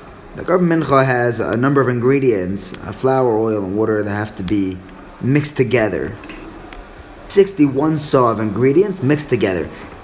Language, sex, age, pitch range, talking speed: English, male, 20-39, 125-180 Hz, 155 wpm